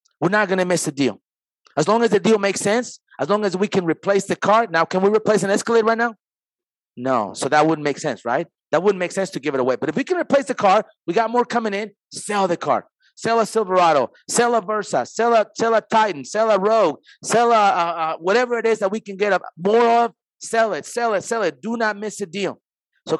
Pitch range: 195-230 Hz